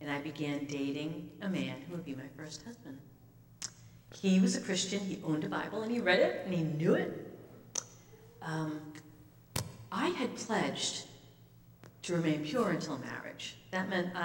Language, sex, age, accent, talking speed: English, female, 50-69, American, 165 wpm